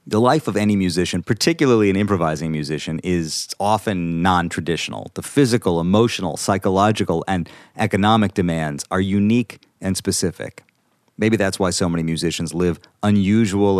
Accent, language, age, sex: American, English, 40-59, male